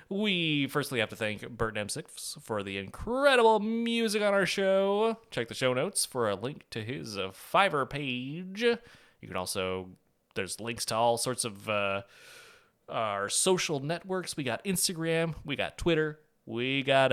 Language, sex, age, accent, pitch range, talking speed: English, male, 30-49, American, 105-160 Hz, 160 wpm